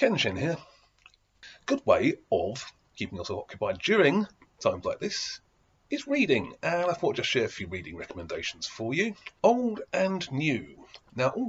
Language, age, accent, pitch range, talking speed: English, 40-59, British, 115-165 Hz, 165 wpm